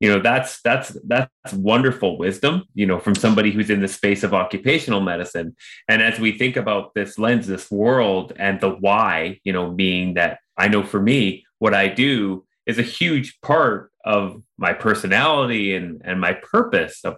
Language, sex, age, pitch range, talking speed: English, male, 30-49, 100-130 Hz, 185 wpm